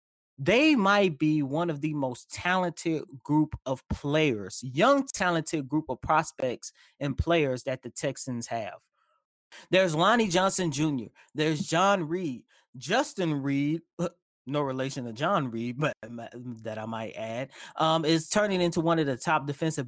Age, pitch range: 20-39, 135-160 Hz